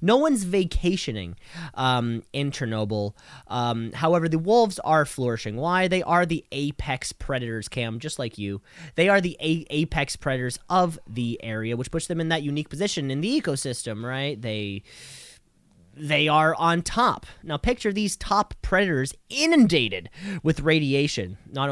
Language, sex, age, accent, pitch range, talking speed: English, male, 20-39, American, 130-175 Hz, 155 wpm